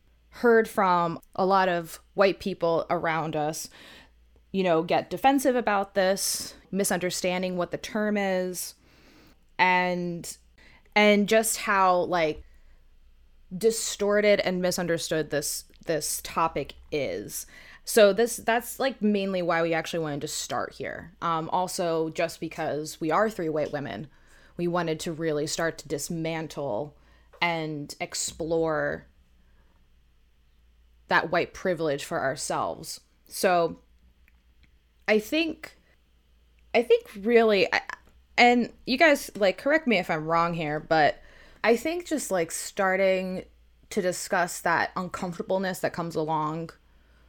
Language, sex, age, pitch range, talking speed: English, female, 20-39, 145-190 Hz, 120 wpm